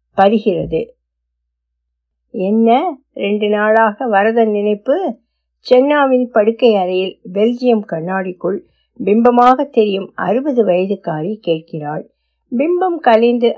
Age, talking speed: 50-69, 50 wpm